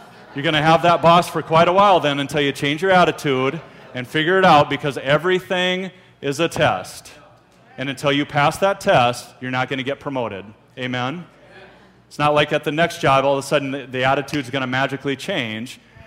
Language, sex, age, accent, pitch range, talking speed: English, male, 40-59, American, 130-155 Hz, 205 wpm